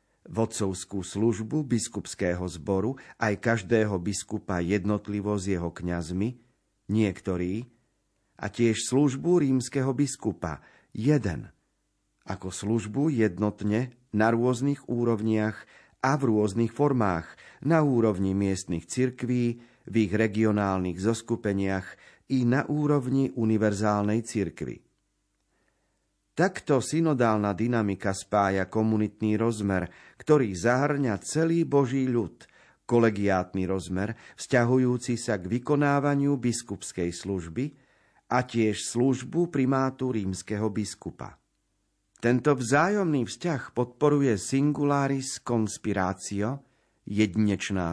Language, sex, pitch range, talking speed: Slovak, male, 100-130 Hz, 90 wpm